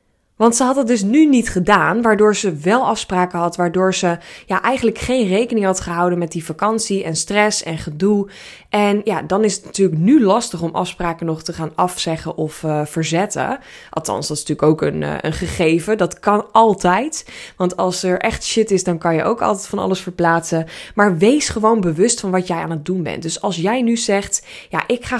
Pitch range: 175-225 Hz